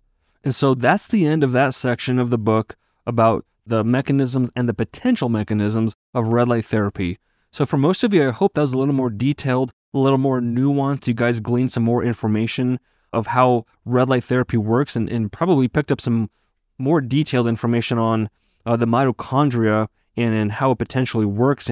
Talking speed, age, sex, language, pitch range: 195 wpm, 20-39, male, English, 110-125 Hz